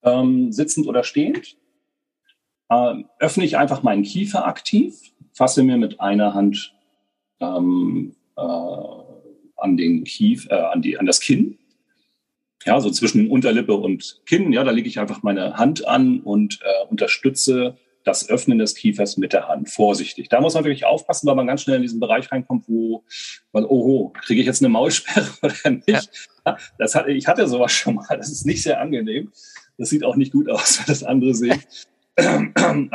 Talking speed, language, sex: 180 wpm, German, male